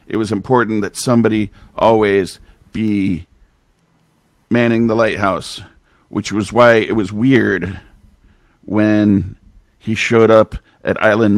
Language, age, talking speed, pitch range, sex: English, 50-69, 115 wpm, 105-120 Hz, male